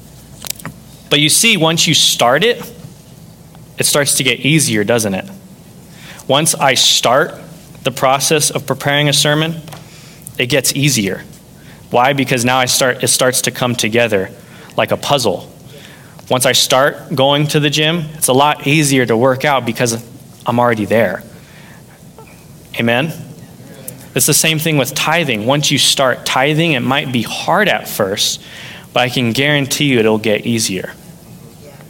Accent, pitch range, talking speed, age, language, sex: American, 125-155 Hz, 155 wpm, 20-39, English, male